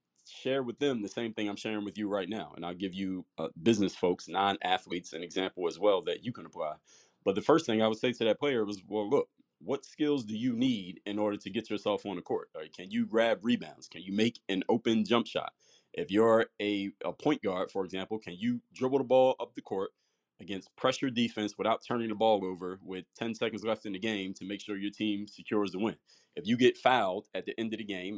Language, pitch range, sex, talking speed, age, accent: English, 105-130 Hz, male, 245 wpm, 30-49, American